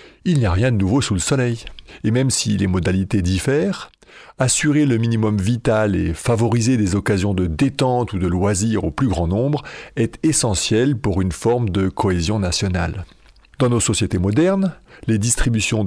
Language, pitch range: French, 100-135 Hz